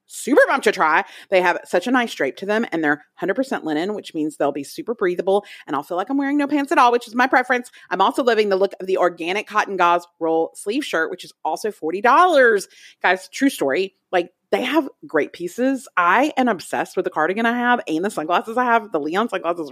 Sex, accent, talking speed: female, American, 235 wpm